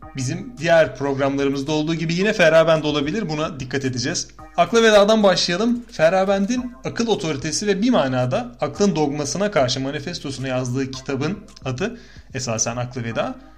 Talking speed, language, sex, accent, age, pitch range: 135 wpm, Turkish, male, native, 30-49, 135-205 Hz